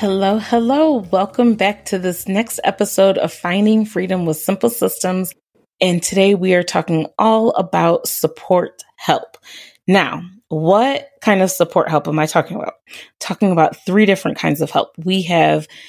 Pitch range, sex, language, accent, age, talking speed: 165-215 Hz, female, English, American, 30-49, 160 wpm